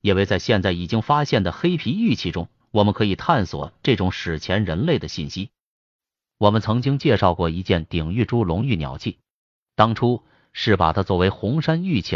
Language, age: Chinese, 30-49